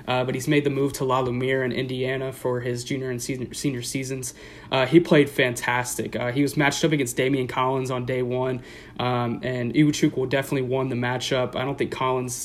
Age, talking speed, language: 20-39, 210 wpm, English